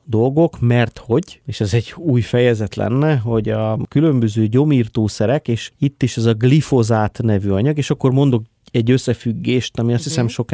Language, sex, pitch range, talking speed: Hungarian, male, 110-135 Hz, 170 wpm